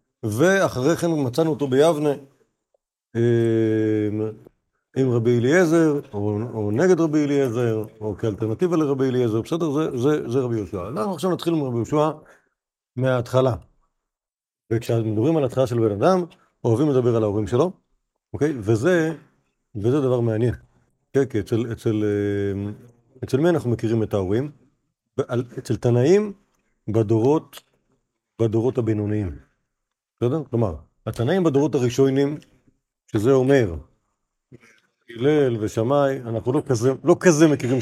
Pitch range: 115-150 Hz